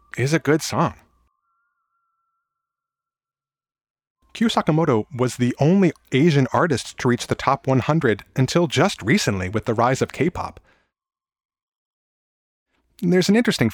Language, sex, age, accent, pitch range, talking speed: English, male, 30-49, American, 105-145 Hz, 120 wpm